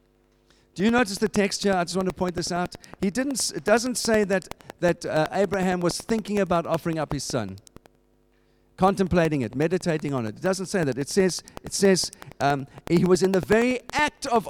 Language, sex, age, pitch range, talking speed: English, male, 50-69, 120-195 Hz, 205 wpm